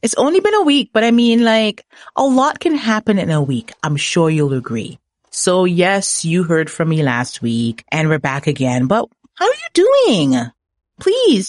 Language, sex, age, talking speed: English, female, 30-49, 200 wpm